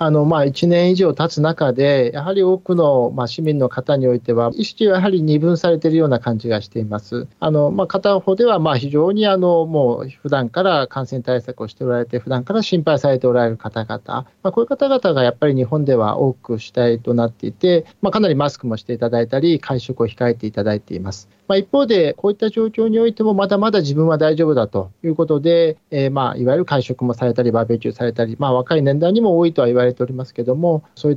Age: 40-59